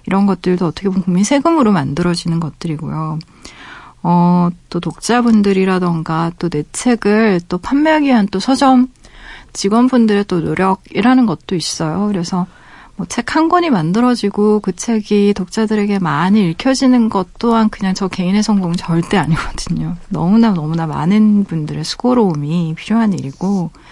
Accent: native